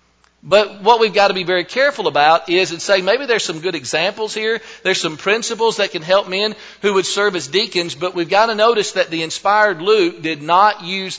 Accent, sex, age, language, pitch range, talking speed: American, male, 50-69, English, 175-215 Hz, 225 wpm